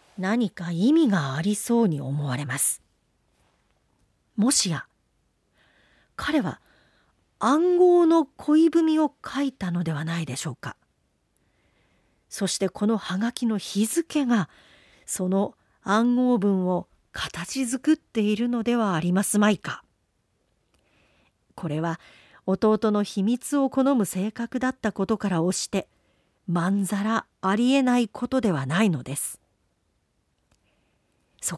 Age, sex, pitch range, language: 40-59, female, 175-245 Hz, Japanese